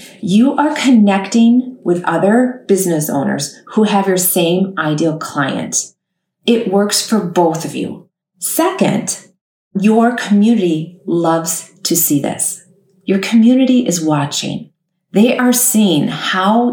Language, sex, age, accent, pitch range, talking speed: English, female, 40-59, American, 175-215 Hz, 120 wpm